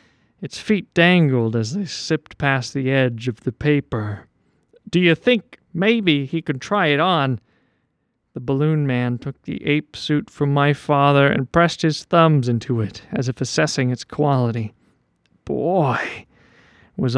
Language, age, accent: English, 40-59, American